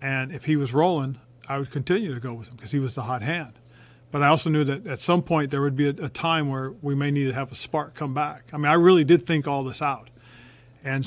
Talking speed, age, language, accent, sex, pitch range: 280 wpm, 40-59, English, American, male, 130-145 Hz